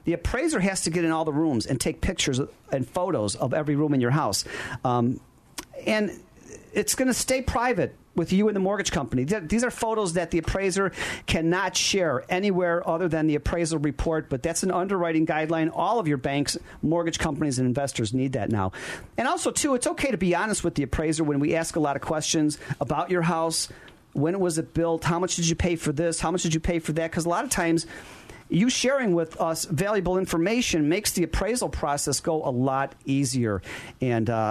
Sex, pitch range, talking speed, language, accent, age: male, 150-180 Hz, 210 wpm, English, American, 40-59